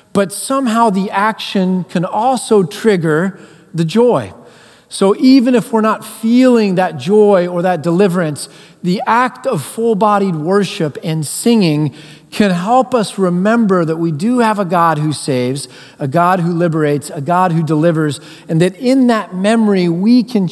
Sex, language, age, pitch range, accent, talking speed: male, English, 40-59, 160-210 Hz, American, 160 wpm